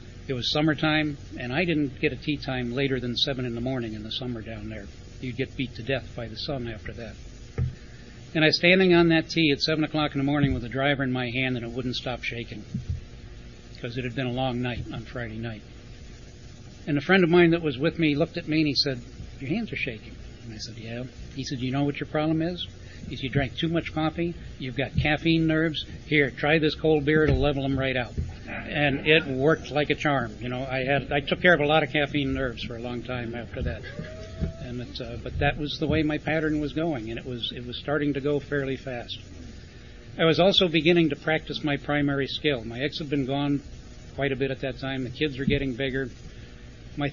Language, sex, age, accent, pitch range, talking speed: English, male, 60-79, American, 120-150 Hz, 240 wpm